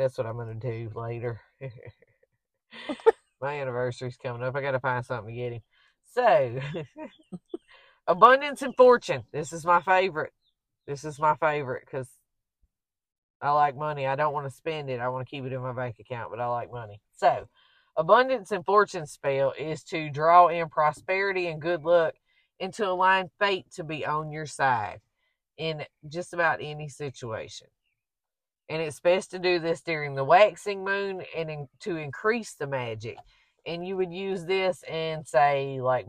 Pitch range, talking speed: 130-170 Hz, 170 wpm